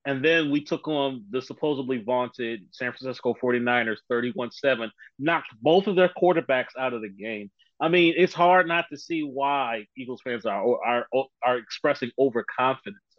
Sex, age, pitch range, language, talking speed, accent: male, 30-49, 125-165 Hz, English, 165 wpm, American